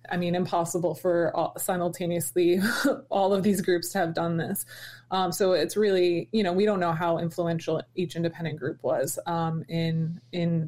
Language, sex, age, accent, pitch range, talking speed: English, female, 20-39, American, 165-185 Hz, 180 wpm